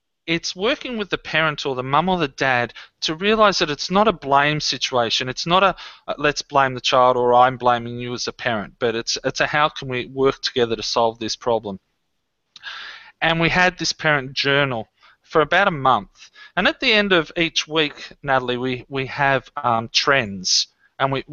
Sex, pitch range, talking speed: male, 125-165 Hz, 200 wpm